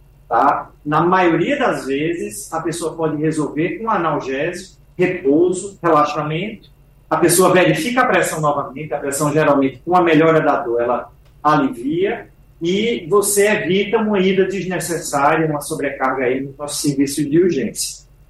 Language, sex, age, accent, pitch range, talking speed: Portuguese, male, 40-59, Brazilian, 140-175 Hz, 140 wpm